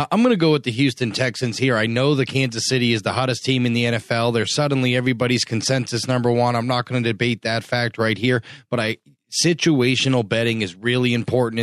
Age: 30-49